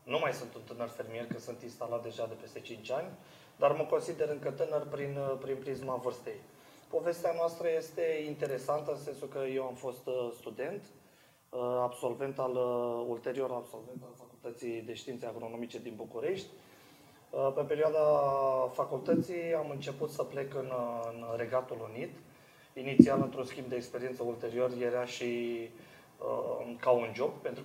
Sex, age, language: male, 30-49, Romanian